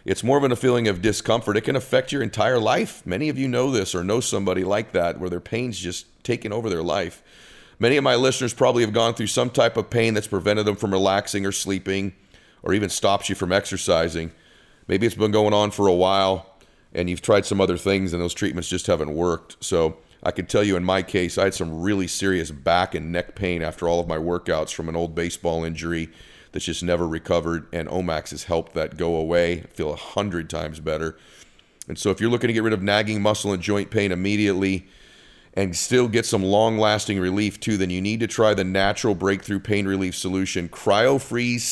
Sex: male